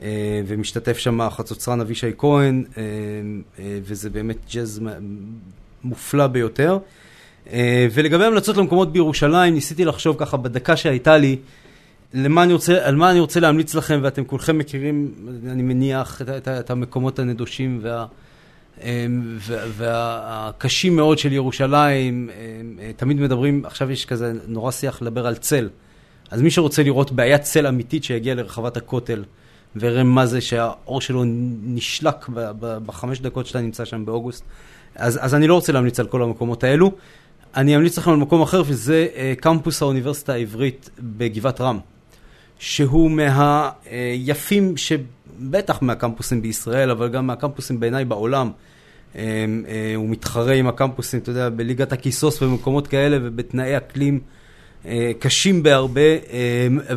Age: 30-49